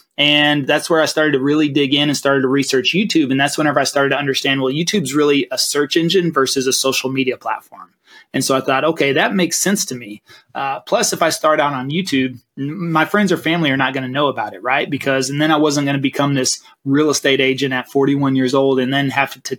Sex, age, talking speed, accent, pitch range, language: male, 30-49, 255 wpm, American, 135-160 Hz, English